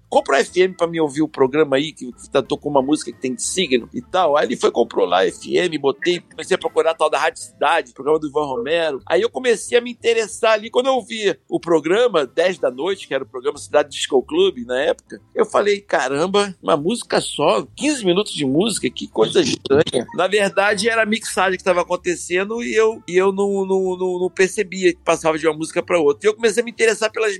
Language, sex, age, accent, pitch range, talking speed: Portuguese, male, 60-79, Brazilian, 155-215 Hz, 230 wpm